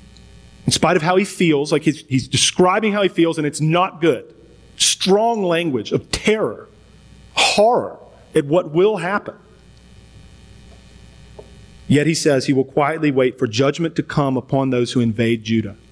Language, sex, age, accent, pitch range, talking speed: English, male, 40-59, American, 135-190 Hz, 160 wpm